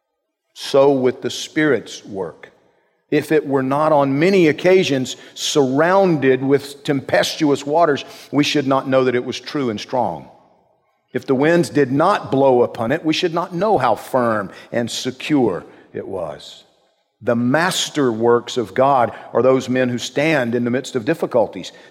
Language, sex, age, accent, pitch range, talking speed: English, male, 50-69, American, 120-150 Hz, 160 wpm